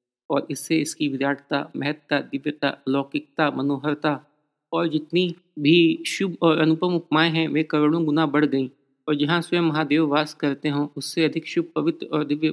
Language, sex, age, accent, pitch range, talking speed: Hindi, male, 50-69, native, 140-160 Hz, 165 wpm